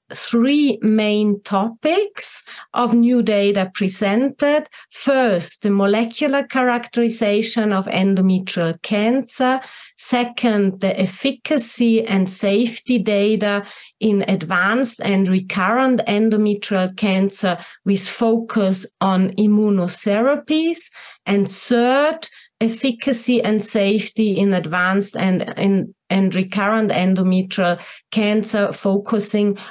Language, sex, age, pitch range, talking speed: English, female, 40-59, 195-235 Hz, 85 wpm